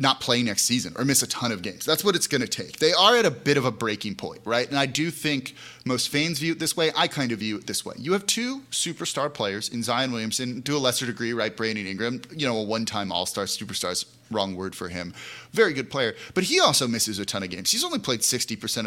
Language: English